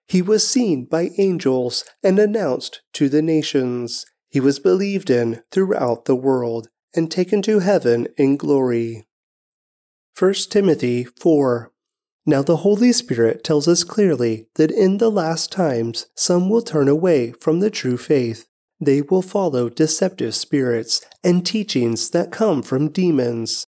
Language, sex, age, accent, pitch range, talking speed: English, male, 30-49, American, 130-195 Hz, 145 wpm